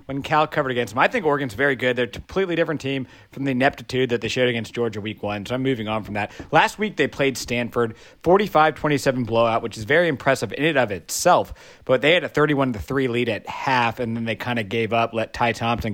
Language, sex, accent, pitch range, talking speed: English, male, American, 110-135 Hz, 240 wpm